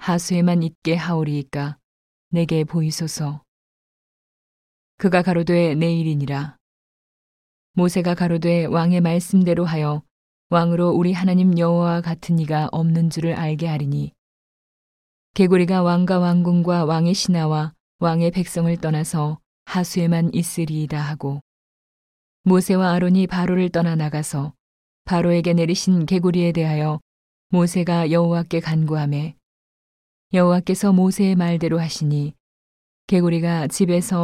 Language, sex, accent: Korean, female, native